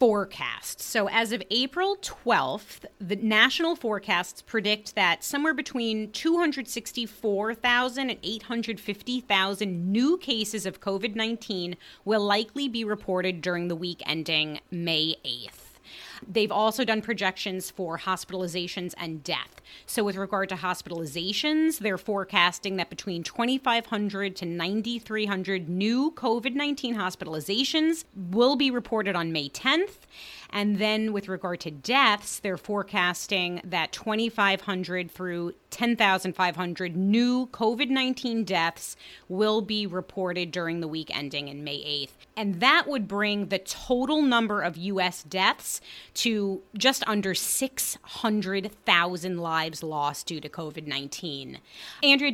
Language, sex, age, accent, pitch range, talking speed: English, female, 30-49, American, 180-235 Hz, 120 wpm